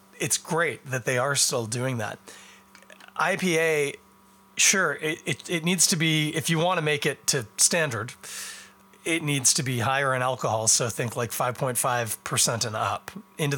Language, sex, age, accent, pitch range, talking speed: English, male, 30-49, American, 120-150 Hz, 180 wpm